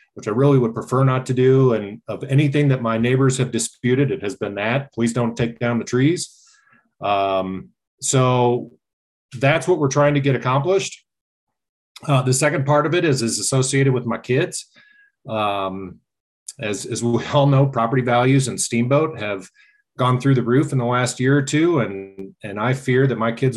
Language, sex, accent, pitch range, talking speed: English, male, American, 105-130 Hz, 190 wpm